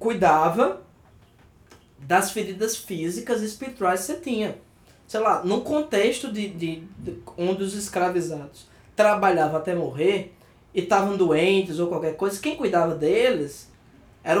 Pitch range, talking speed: 170-250 Hz, 125 wpm